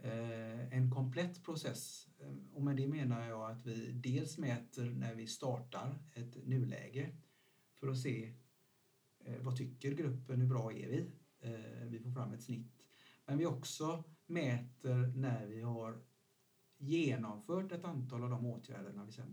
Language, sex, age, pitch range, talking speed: Swedish, male, 60-79, 120-140 Hz, 145 wpm